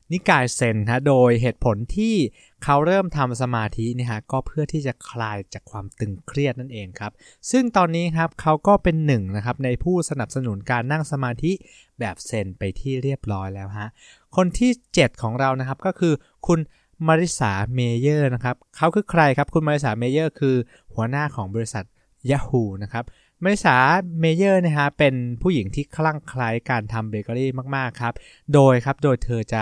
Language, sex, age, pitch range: English, male, 20-39, 110-150 Hz